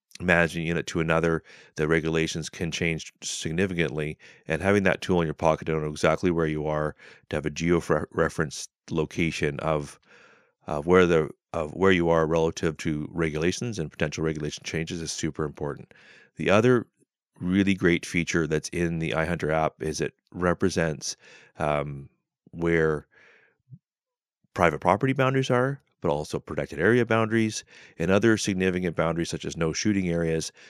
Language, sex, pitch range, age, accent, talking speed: English, male, 80-90 Hz, 30-49, American, 155 wpm